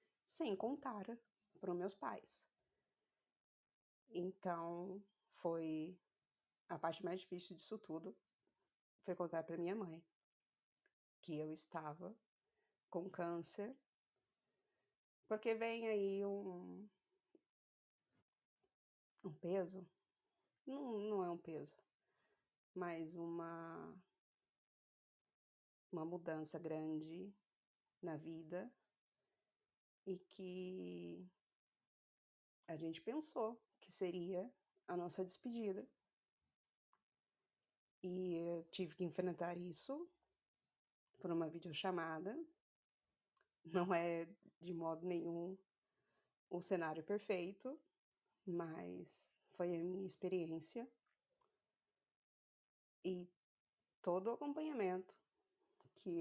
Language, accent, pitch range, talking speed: Portuguese, Brazilian, 170-205 Hz, 85 wpm